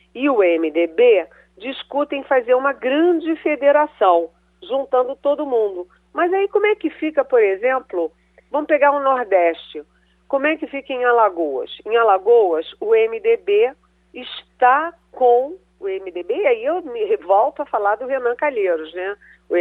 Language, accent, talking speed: Portuguese, Brazilian, 150 wpm